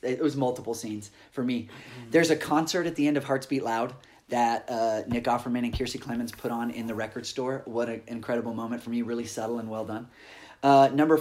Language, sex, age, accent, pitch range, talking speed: English, male, 30-49, American, 115-135 Hz, 225 wpm